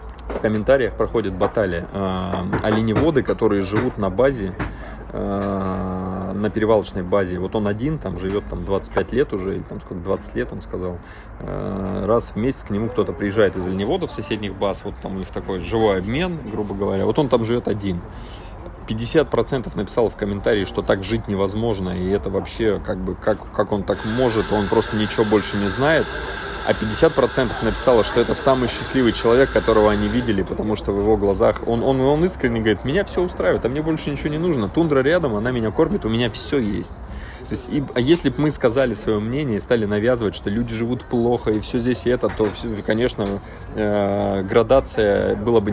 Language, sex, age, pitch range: Russian, male, 20-39, 100-125 Hz